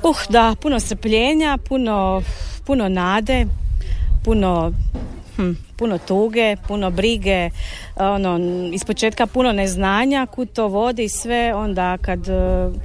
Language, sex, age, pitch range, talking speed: Croatian, female, 40-59, 180-230 Hz, 105 wpm